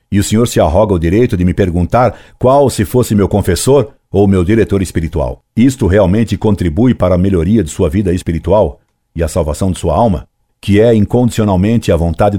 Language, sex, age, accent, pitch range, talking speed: Portuguese, male, 50-69, Brazilian, 85-115 Hz, 195 wpm